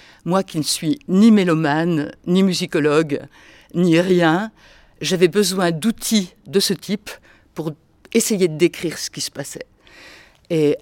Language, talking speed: French, 140 wpm